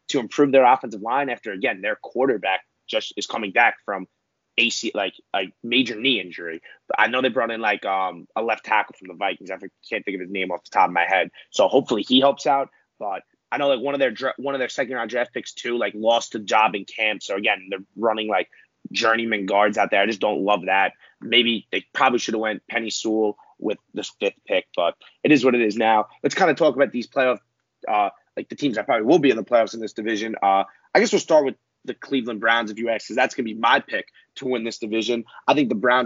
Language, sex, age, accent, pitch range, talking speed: English, male, 30-49, American, 110-125 Hz, 255 wpm